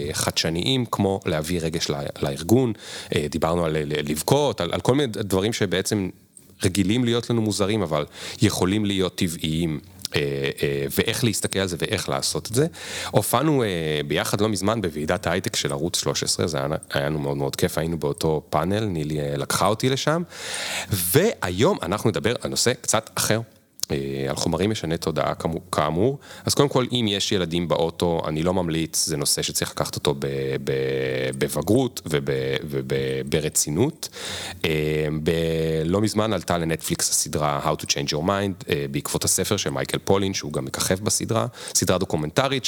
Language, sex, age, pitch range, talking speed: Hebrew, male, 30-49, 75-105 Hz, 145 wpm